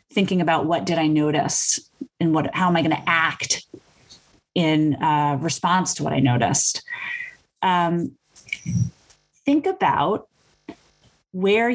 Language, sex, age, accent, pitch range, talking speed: English, female, 30-49, American, 155-200 Hz, 130 wpm